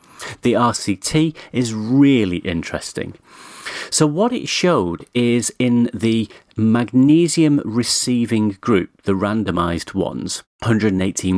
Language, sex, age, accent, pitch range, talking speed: English, male, 40-59, British, 95-125 Hz, 100 wpm